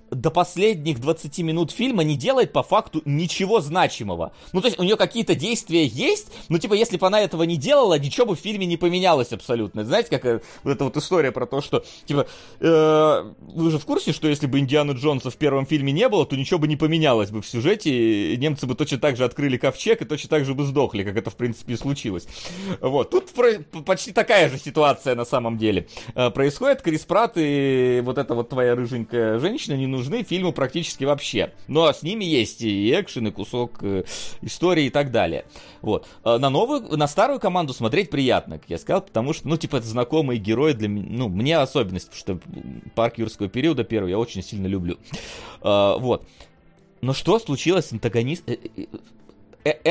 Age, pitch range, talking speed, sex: 30-49, 120-170 Hz, 195 wpm, male